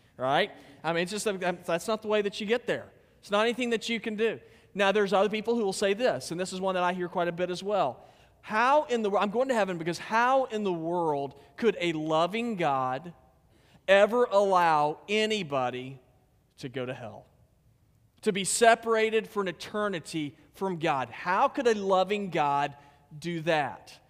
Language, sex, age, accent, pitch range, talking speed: English, male, 40-59, American, 165-220 Hz, 195 wpm